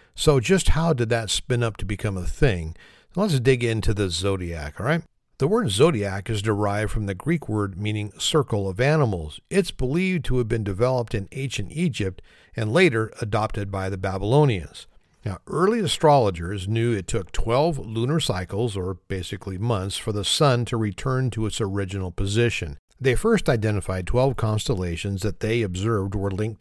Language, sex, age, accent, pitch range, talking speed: English, male, 50-69, American, 100-130 Hz, 175 wpm